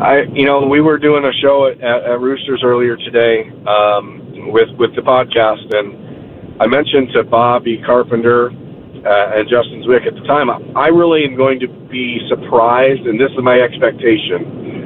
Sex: male